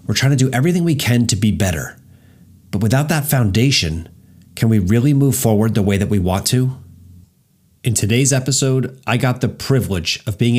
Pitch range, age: 105-135 Hz, 30-49